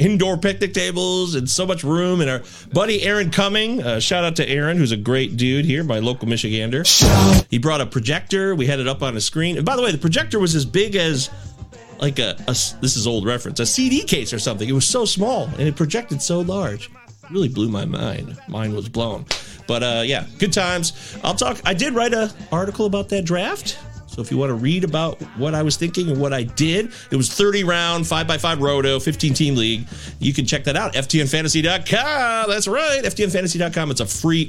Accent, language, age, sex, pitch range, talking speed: American, English, 40-59, male, 125-185 Hz, 215 wpm